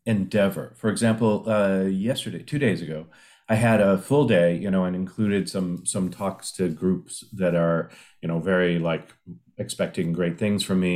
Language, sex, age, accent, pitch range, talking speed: English, male, 40-59, American, 90-115 Hz, 180 wpm